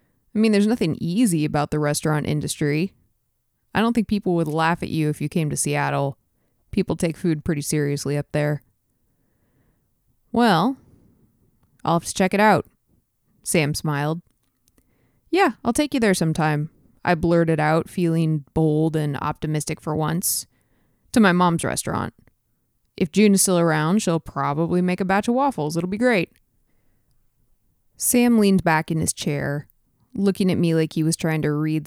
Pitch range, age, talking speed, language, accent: 150-180 Hz, 20-39, 165 wpm, English, American